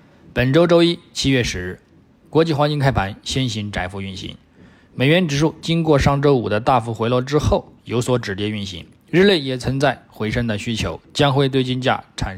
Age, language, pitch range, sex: 20-39, Chinese, 105-140 Hz, male